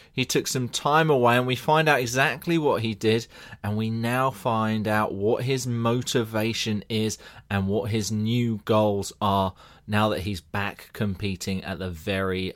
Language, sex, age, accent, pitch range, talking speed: English, male, 20-39, British, 105-130 Hz, 170 wpm